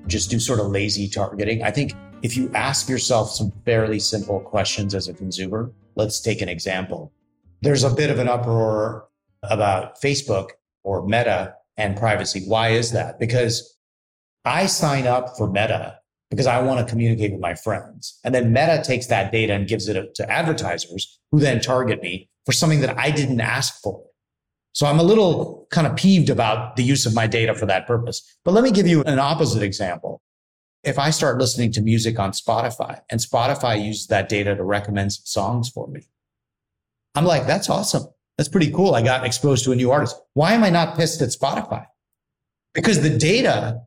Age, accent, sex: 30-49, American, male